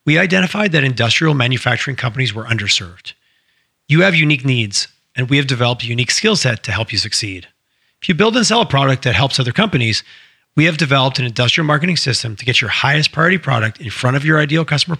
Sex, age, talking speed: male, 40-59, 215 wpm